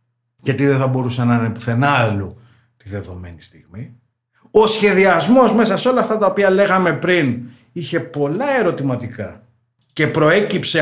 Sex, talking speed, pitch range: male, 145 wpm, 125-205 Hz